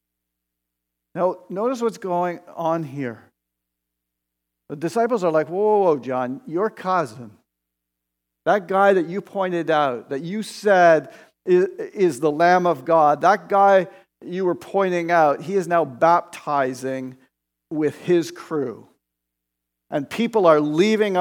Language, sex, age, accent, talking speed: English, male, 50-69, American, 135 wpm